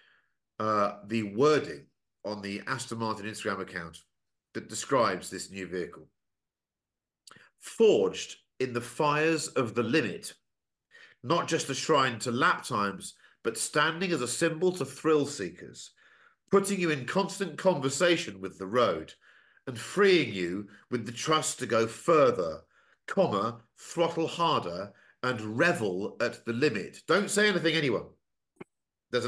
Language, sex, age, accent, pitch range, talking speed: English, male, 50-69, British, 115-165 Hz, 135 wpm